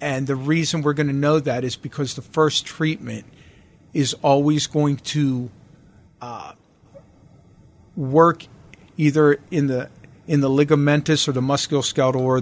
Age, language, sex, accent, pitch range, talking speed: 40-59, English, male, American, 125-150 Hz, 140 wpm